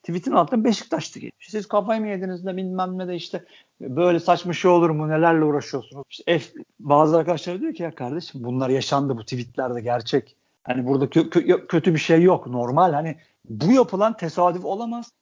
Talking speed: 180 wpm